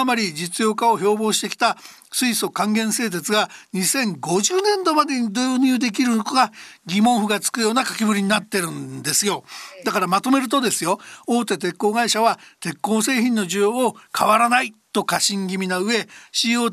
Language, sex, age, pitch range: Japanese, male, 60-79, 195-235 Hz